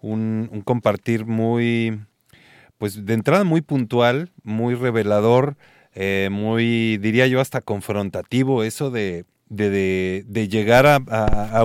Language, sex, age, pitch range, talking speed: Spanish, male, 30-49, 105-140 Hz, 120 wpm